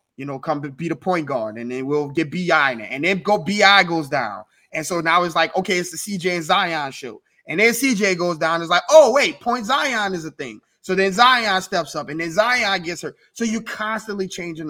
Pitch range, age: 145-185 Hz, 20-39